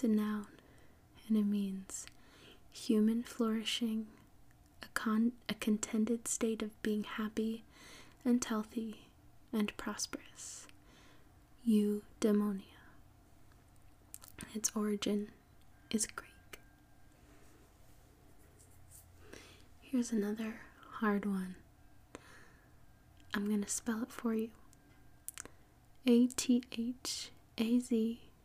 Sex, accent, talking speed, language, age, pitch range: female, American, 75 wpm, English, 20-39, 205-230 Hz